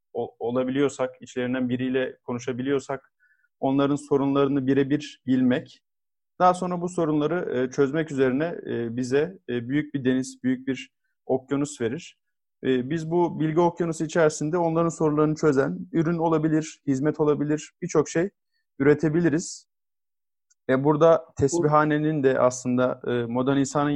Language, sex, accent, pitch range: Turkish, male, native, 130-155 Hz